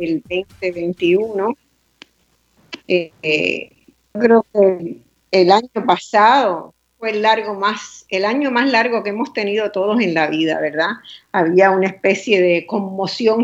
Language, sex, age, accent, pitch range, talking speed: Spanish, female, 50-69, American, 175-205 Hz, 140 wpm